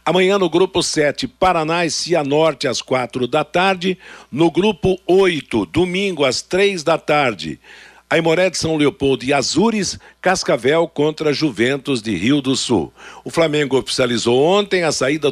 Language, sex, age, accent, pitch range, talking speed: Portuguese, male, 60-79, Brazilian, 135-175 Hz, 150 wpm